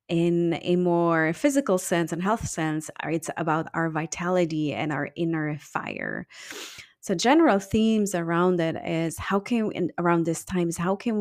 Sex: female